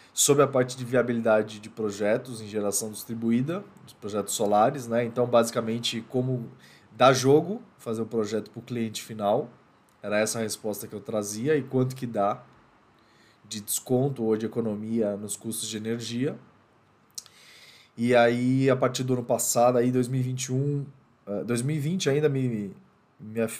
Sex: male